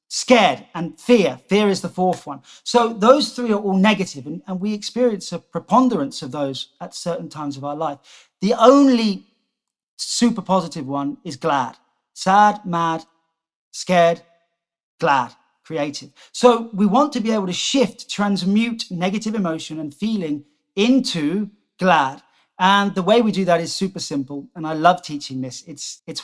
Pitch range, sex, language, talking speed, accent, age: 160-215 Hz, male, English, 160 wpm, British, 40-59